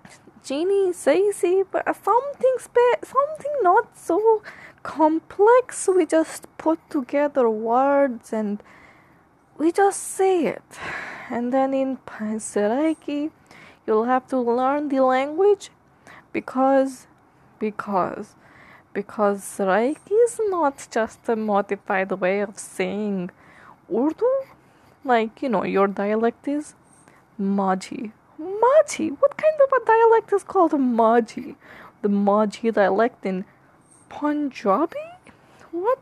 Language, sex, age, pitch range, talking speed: English, female, 20-39, 215-320 Hz, 105 wpm